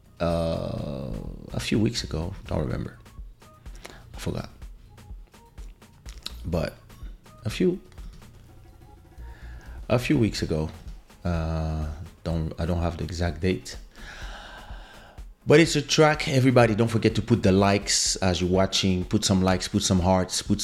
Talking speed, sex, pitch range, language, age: 130 wpm, male, 85-110 Hz, English, 30-49